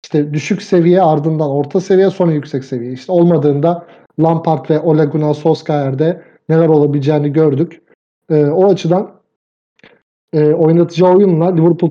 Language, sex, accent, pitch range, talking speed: Turkish, male, native, 150-175 Hz, 130 wpm